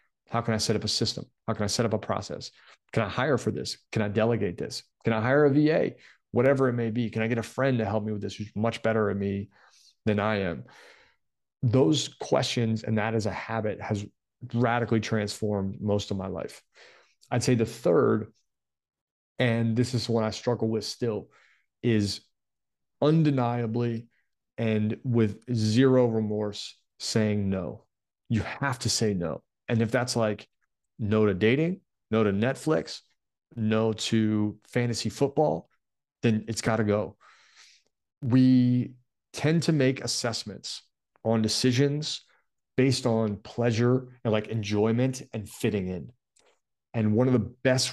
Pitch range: 105-120 Hz